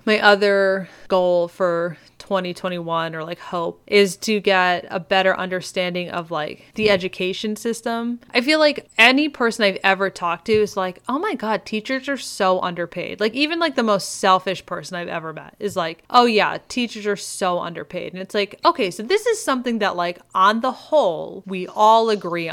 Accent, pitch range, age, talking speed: American, 180-220 Hz, 20-39, 190 wpm